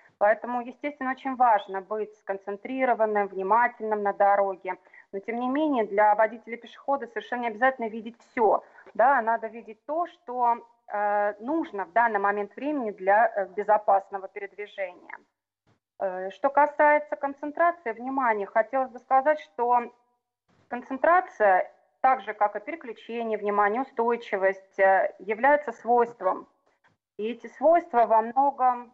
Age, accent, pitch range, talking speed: 30-49, native, 200-245 Hz, 115 wpm